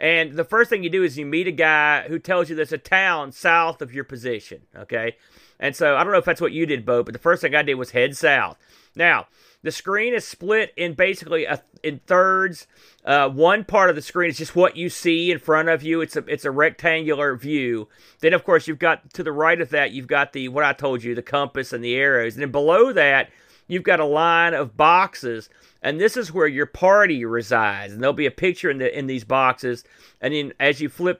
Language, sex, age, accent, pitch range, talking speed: English, male, 40-59, American, 135-170 Hz, 245 wpm